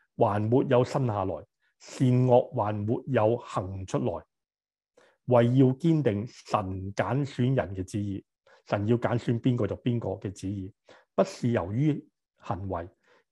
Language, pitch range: Chinese, 105-130 Hz